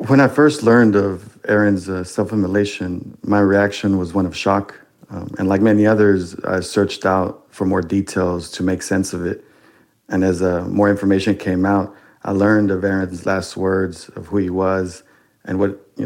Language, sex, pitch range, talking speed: English, male, 95-100 Hz, 190 wpm